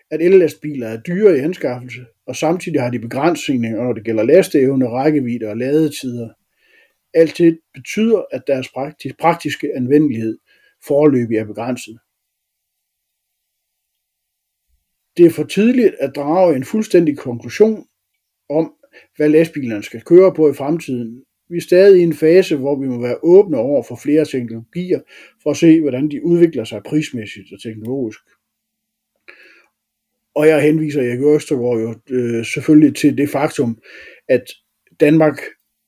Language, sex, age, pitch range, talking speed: Danish, male, 60-79, 120-160 Hz, 140 wpm